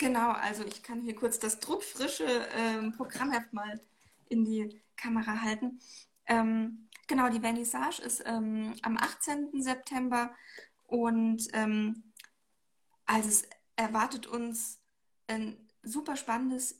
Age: 10-29